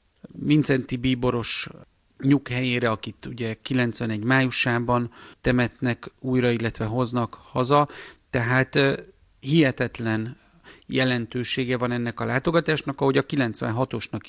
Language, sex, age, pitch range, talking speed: Hungarian, male, 40-59, 115-135 Hz, 90 wpm